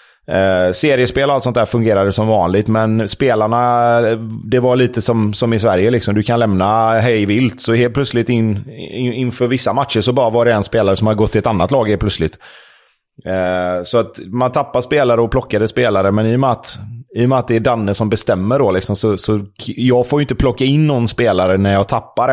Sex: male